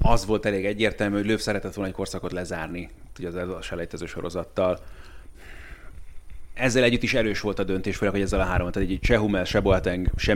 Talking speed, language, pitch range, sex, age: 185 wpm, Hungarian, 95-115 Hz, male, 30-49